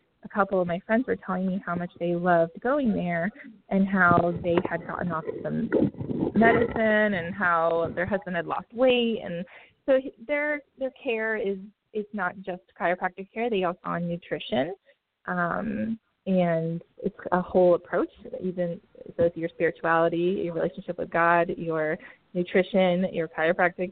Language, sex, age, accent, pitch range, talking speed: English, female, 20-39, American, 170-215 Hz, 160 wpm